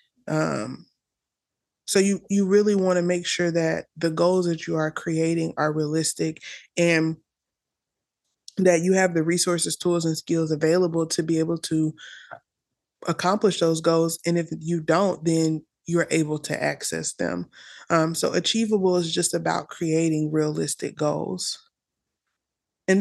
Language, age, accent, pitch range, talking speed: English, 20-39, American, 160-180 Hz, 145 wpm